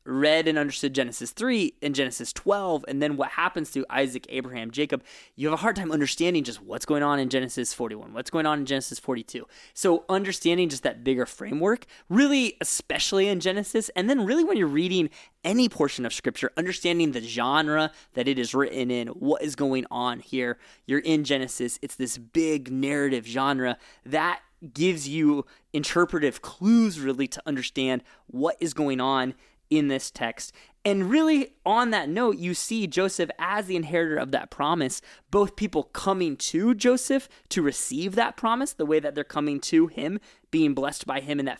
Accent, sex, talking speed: American, male, 185 wpm